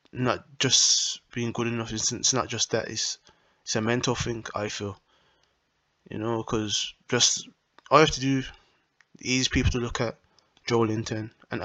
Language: English